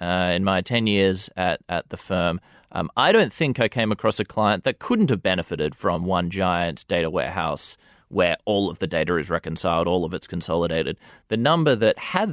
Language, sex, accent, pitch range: English, male, Australian, 90-110 Hz